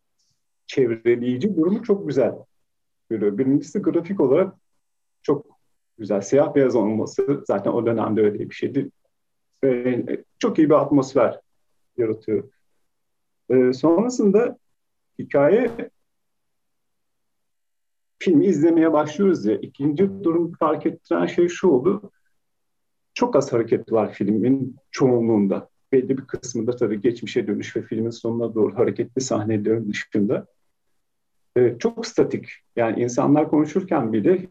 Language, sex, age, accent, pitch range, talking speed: Turkish, male, 40-59, native, 115-175 Hz, 115 wpm